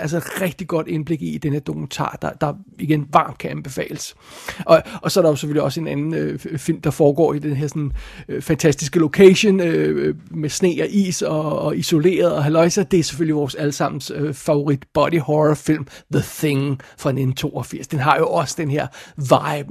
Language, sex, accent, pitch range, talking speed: Danish, male, native, 150-175 Hz, 205 wpm